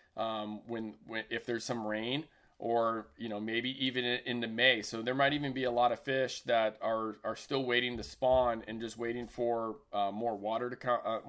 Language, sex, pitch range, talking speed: English, male, 115-145 Hz, 205 wpm